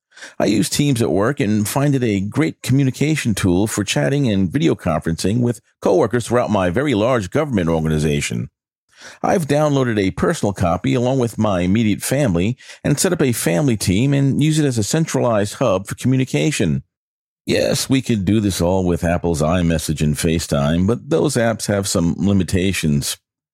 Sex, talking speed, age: male, 170 wpm, 50-69